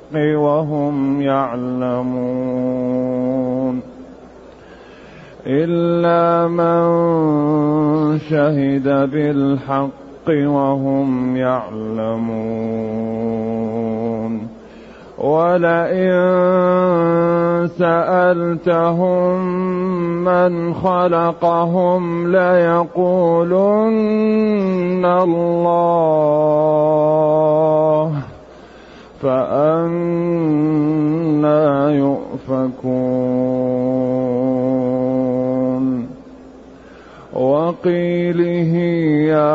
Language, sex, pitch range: Arabic, male, 125-170 Hz